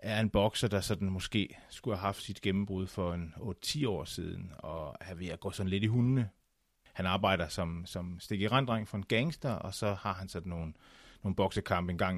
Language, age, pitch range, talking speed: Danish, 30-49, 90-115 Hz, 210 wpm